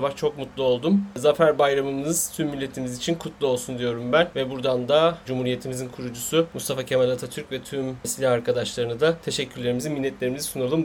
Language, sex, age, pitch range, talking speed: Turkish, male, 30-49, 135-185 Hz, 155 wpm